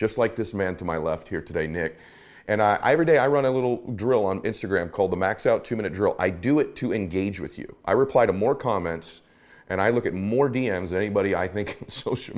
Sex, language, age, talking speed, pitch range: male, English, 30-49, 245 wpm, 95-125 Hz